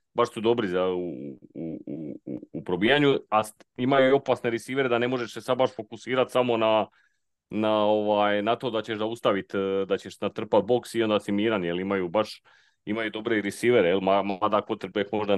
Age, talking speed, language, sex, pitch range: 30-49, 190 wpm, Croatian, male, 105-125 Hz